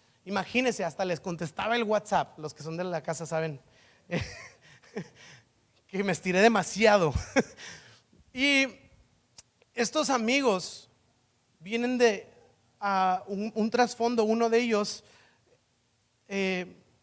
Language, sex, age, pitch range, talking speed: Spanish, male, 30-49, 170-245 Hz, 105 wpm